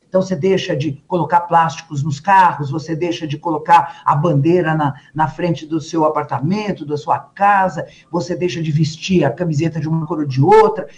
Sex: male